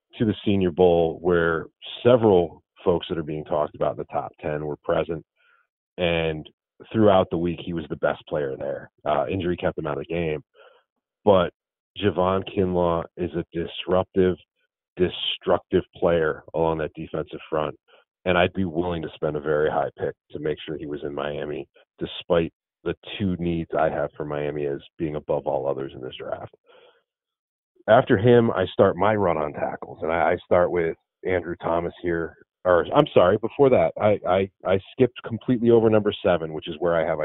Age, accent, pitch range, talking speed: 30-49, American, 85-115 Hz, 185 wpm